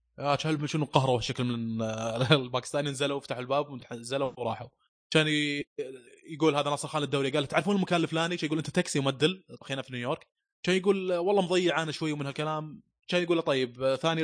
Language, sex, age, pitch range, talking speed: Arabic, male, 20-39, 120-155 Hz, 175 wpm